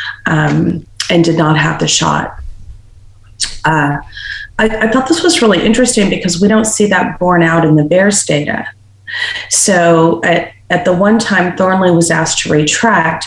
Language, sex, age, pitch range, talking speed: English, female, 30-49, 155-180 Hz, 165 wpm